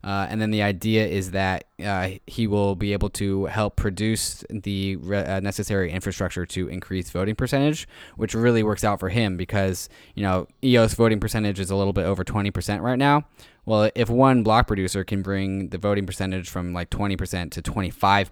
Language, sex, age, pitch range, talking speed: English, male, 10-29, 95-110 Hz, 195 wpm